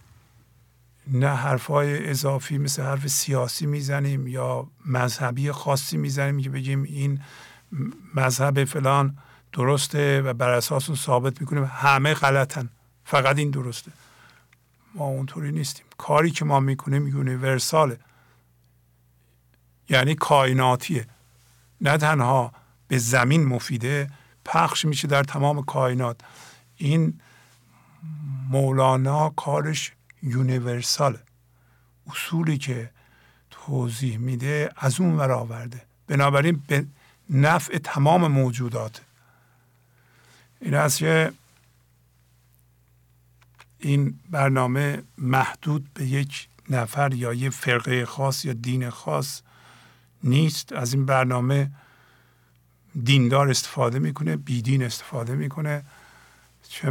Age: 50-69